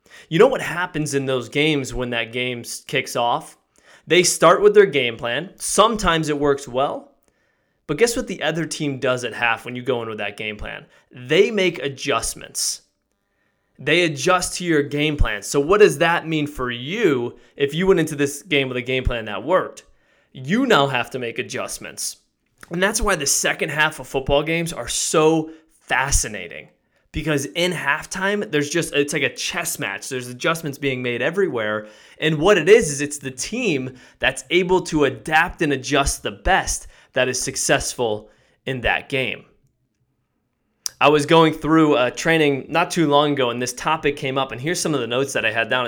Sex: male